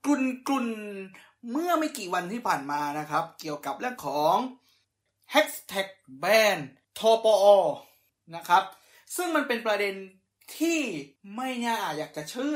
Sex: male